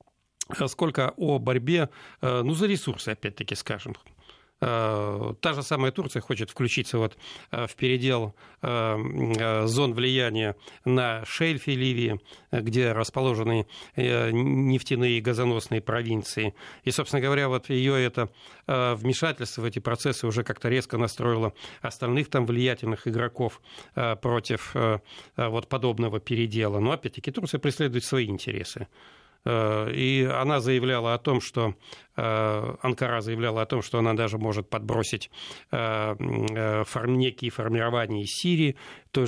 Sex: male